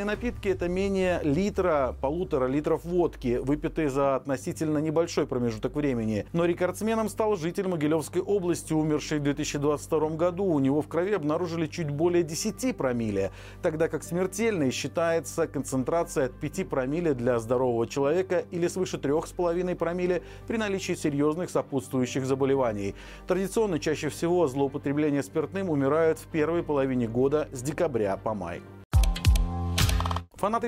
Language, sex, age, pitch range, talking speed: Russian, male, 40-59, 140-180 Hz, 130 wpm